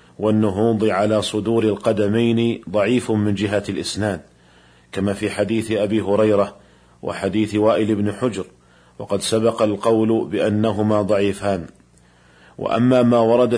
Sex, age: male, 40-59